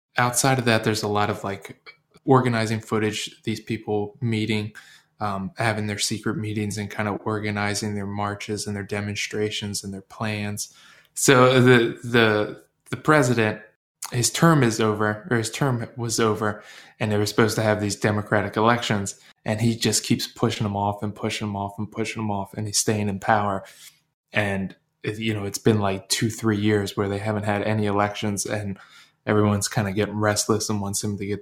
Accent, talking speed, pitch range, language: American, 190 wpm, 105-120 Hz, English